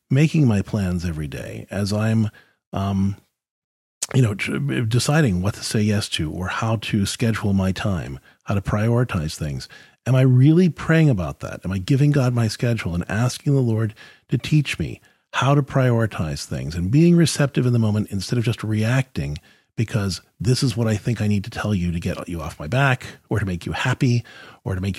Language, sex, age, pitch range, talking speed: English, male, 40-59, 95-130 Hz, 200 wpm